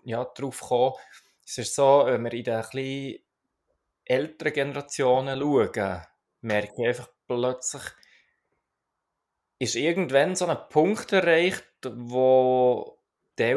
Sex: male